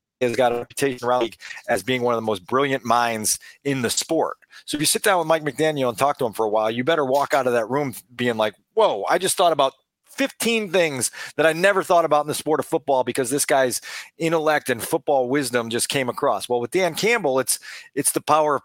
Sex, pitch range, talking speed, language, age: male, 125-165 Hz, 245 wpm, English, 40-59